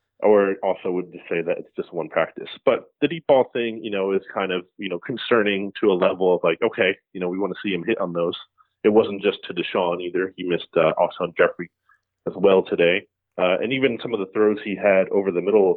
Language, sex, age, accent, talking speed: English, male, 20-39, American, 250 wpm